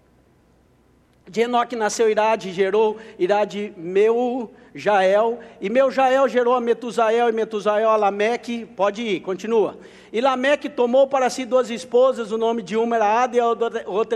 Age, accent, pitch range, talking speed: 60-79, Brazilian, 230-290 Hz, 155 wpm